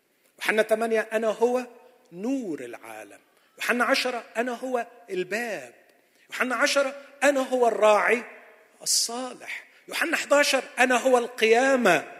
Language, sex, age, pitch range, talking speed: Arabic, male, 40-59, 160-255 Hz, 110 wpm